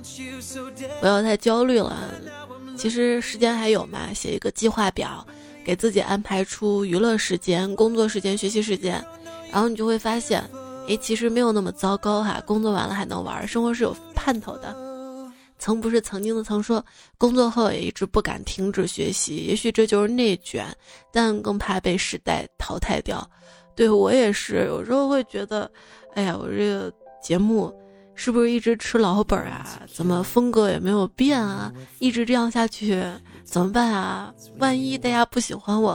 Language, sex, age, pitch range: Chinese, female, 20-39, 195-245 Hz